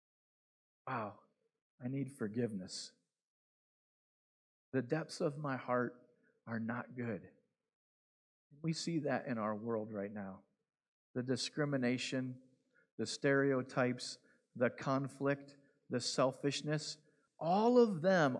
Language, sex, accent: English, male, American